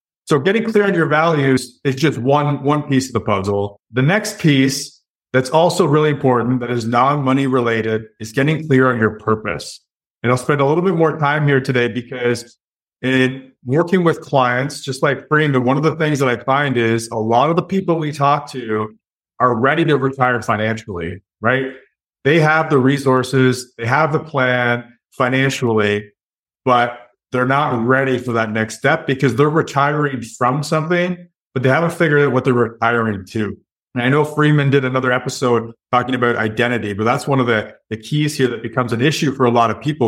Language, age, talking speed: English, 30-49, 195 wpm